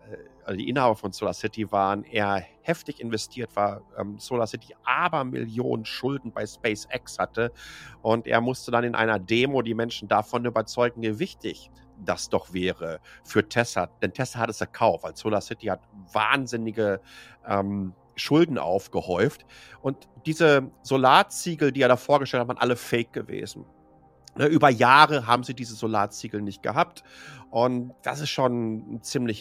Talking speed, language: 155 wpm, German